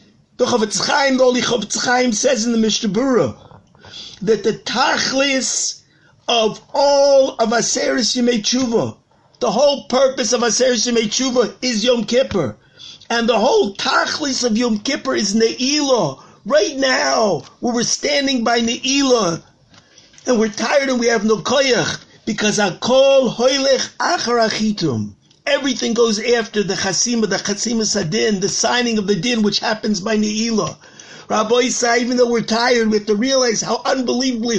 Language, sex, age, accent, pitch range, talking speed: English, male, 50-69, American, 220-260 Hz, 155 wpm